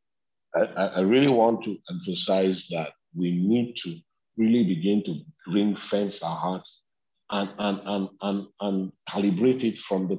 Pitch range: 90-110 Hz